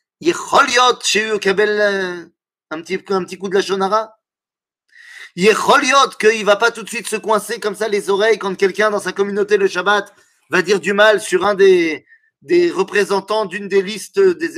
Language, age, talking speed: French, 30-49, 215 wpm